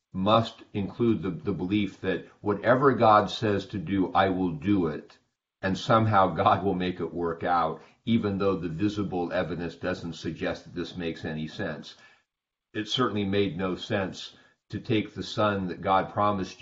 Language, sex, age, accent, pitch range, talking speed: English, male, 40-59, American, 85-105 Hz, 170 wpm